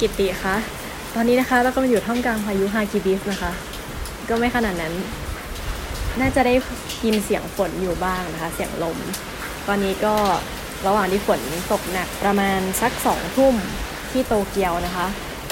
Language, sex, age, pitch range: Thai, female, 20-39, 185-220 Hz